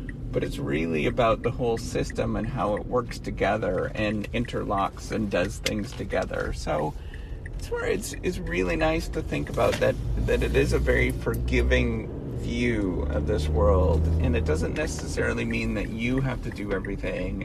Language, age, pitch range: English, 40-59, 90-130 Hz